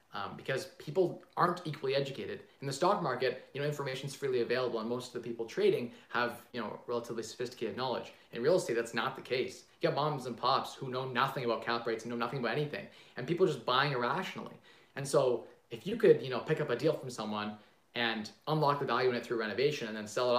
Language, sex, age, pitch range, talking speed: English, male, 20-39, 115-140 Hz, 235 wpm